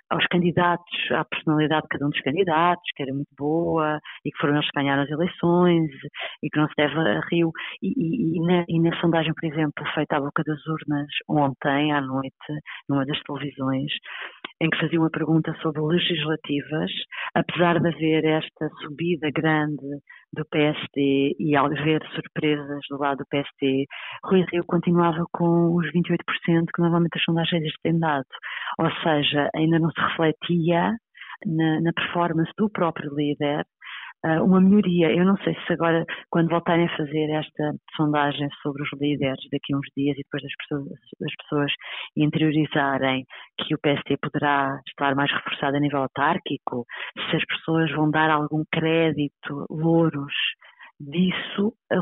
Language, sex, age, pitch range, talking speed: Portuguese, female, 30-49, 145-170 Hz, 160 wpm